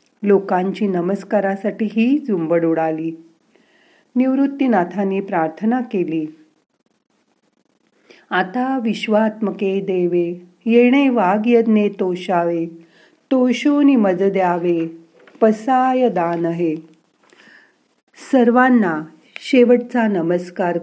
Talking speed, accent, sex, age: 70 wpm, native, female, 40-59